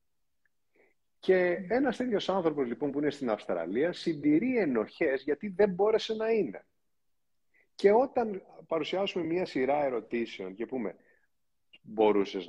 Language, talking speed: Greek, 120 wpm